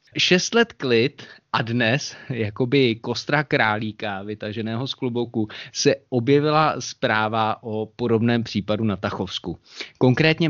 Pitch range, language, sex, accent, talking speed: 105-125 Hz, Czech, male, native, 115 wpm